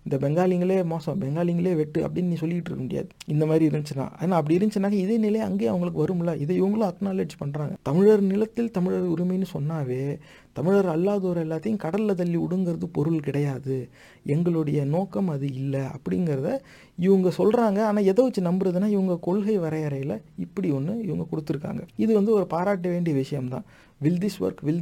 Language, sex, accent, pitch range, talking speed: Tamil, male, native, 150-190 Hz, 155 wpm